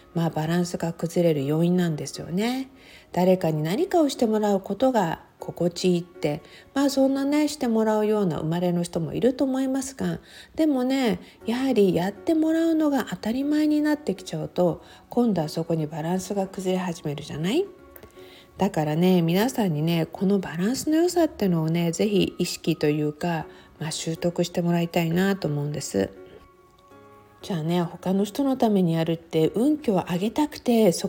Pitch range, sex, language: 165-260 Hz, female, Japanese